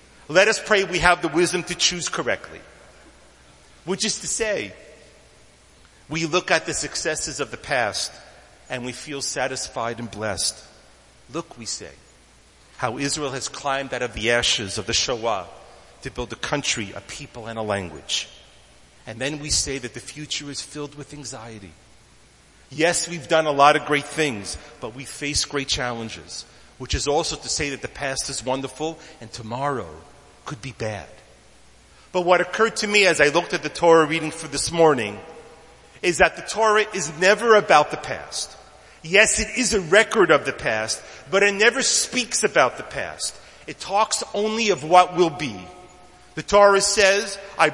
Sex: male